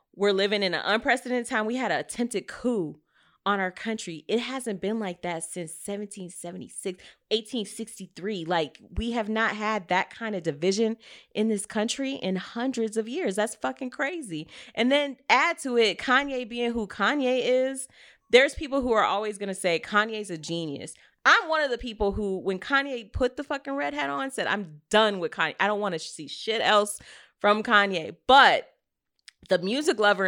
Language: English